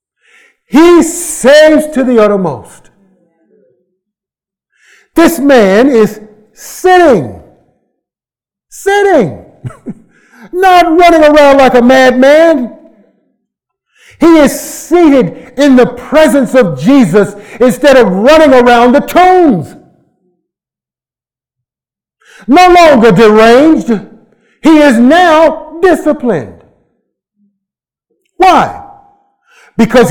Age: 50-69